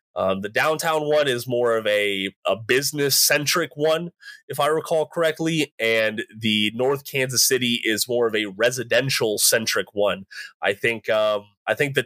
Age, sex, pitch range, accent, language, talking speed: 30-49, male, 105-155 Hz, American, English, 170 wpm